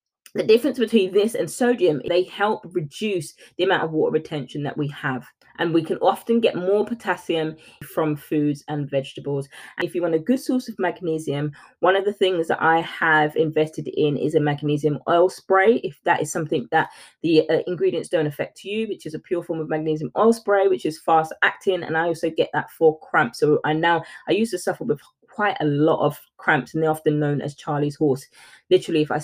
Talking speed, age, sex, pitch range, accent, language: 215 wpm, 20-39, female, 150-185 Hz, British, English